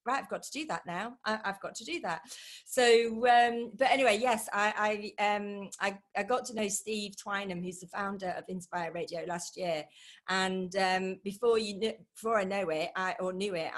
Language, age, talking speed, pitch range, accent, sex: English, 40-59, 215 wpm, 200-250 Hz, British, female